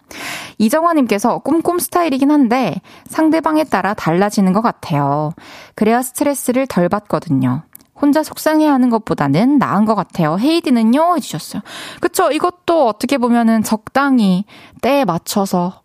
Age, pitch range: 20-39, 190-290 Hz